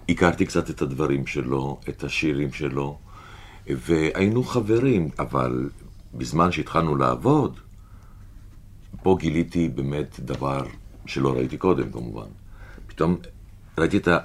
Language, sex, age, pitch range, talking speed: Hebrew, male, 50-69, 80-105 Hz, 110 wpm